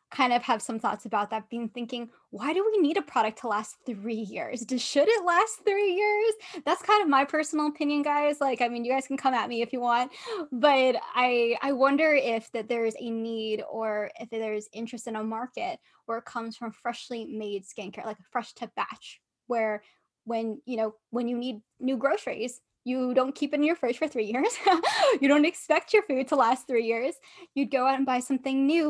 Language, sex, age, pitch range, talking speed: English, female, 10-29, 225-280 Hz, 220 wpm